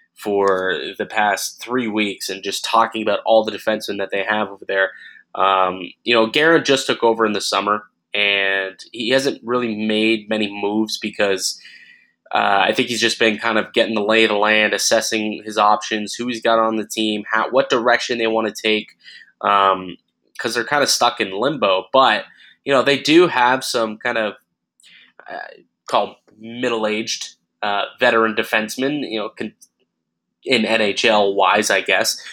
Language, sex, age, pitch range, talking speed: English, male, 20-39, 105-115 Hz, 175 wpm